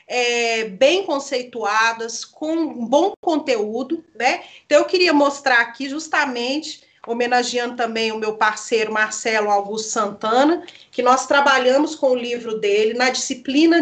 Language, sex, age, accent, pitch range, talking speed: Portuguese, female, 40-59, Brazilian, 235-305 Hz, 130 wpm